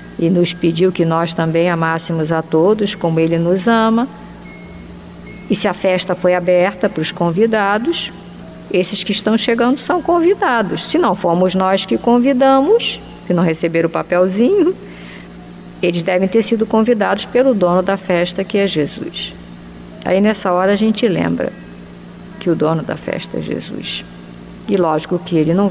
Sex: female